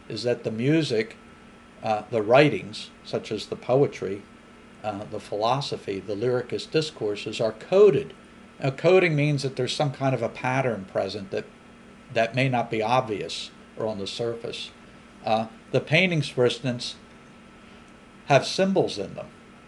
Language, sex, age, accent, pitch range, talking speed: English, male, 50-69, American, 110-135 Hz, 150 wpm